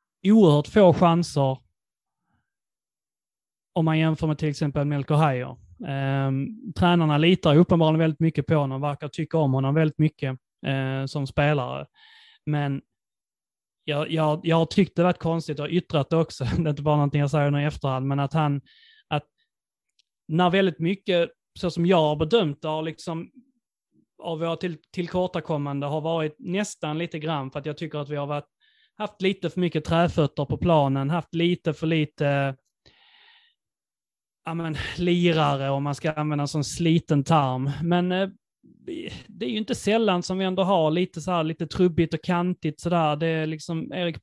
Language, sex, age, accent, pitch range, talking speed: Swedish, male, 30-49, native, 150-175 Hz, 170 wpm